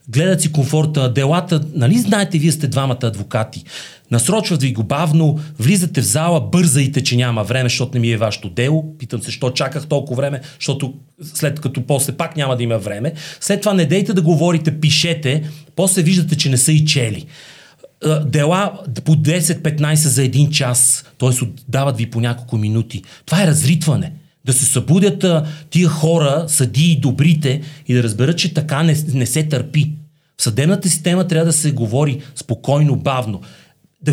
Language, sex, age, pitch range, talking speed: Bulgarian, male, 40-59, 125-160 Hz, 170 wpm